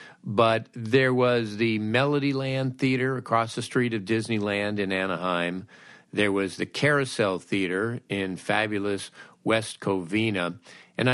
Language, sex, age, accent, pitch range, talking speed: English, male, 50-69, American, 100-130 Hz, 125 wpm